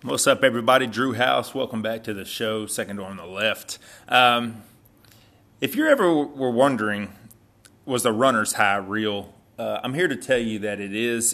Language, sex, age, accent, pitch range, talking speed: English, male, 30-49, American, 105-120 Hz, 185 wpm